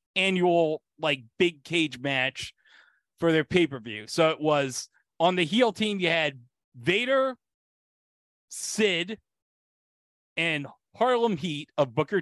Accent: American